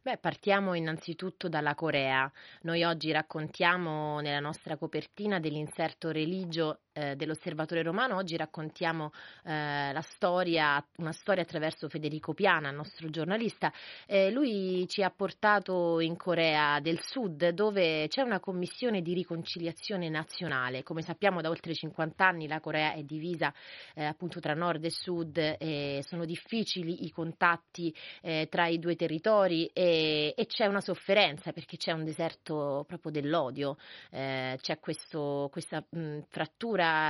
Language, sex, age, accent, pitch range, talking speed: Italian, female, 30-49, native, 155-185 Hz, 135 wpm